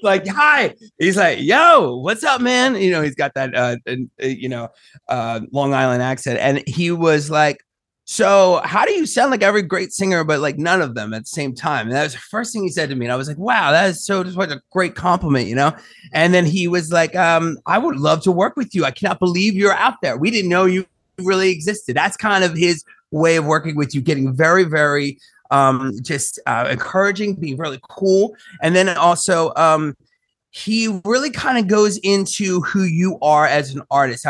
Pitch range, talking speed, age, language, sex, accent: 140-185 Hz, 220 wpm, 30-49, English, male, American